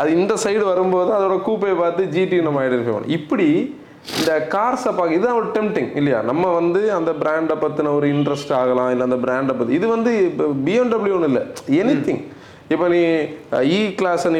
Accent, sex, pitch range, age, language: native, male, 135-190 Hz, 30-49, Tamil